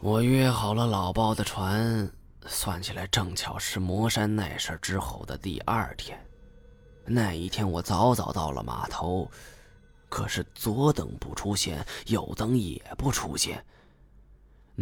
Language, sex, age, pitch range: Chinese, male, 20-39, 75-110 Hz